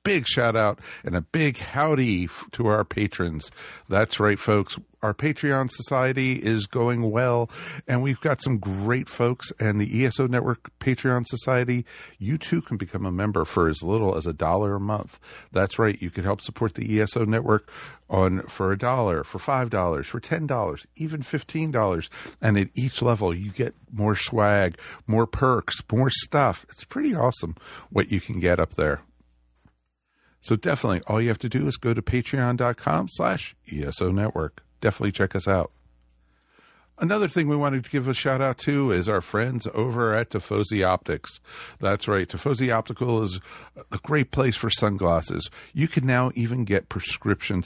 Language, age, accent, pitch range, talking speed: English, 50-69, American, 100-130 Hz, 175 wpm